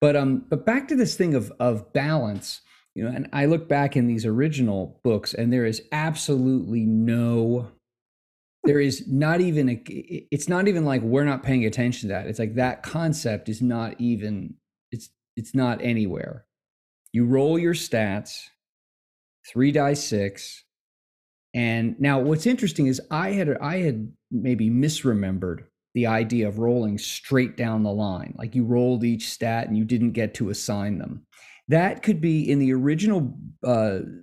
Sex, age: male, 30-49